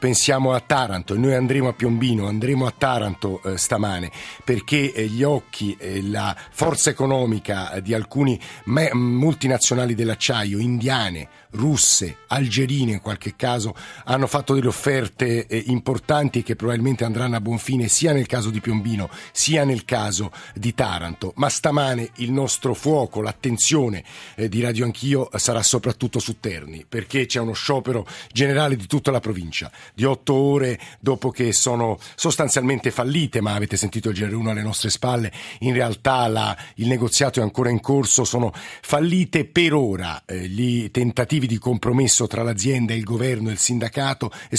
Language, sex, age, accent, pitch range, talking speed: Italian, male, 50-69, native, 110-130 Hz, 165 wpm